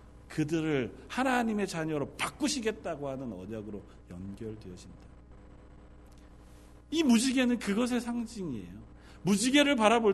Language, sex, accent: Korean, male, native